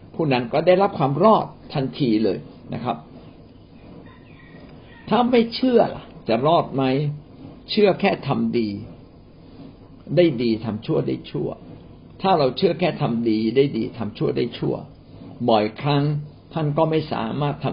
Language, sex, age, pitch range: Thai, male, 60-79, 110-155 Hz